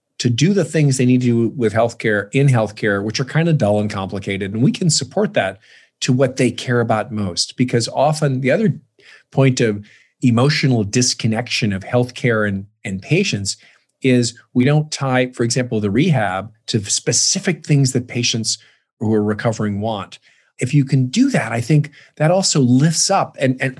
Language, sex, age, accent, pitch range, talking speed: English, male, 40-59, American, 110-135 Hz, 185 wpm